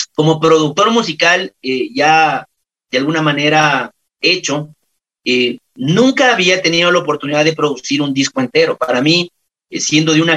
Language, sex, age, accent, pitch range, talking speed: Spanish, male, 40-59, Mexican, 140-180 Hz, 150 wpm